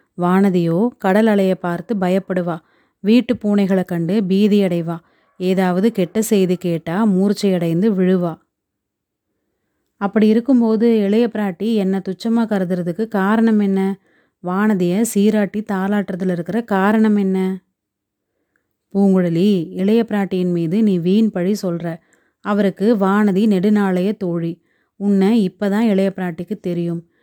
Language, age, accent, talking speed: Tamil, 30-49, native, 105 wpm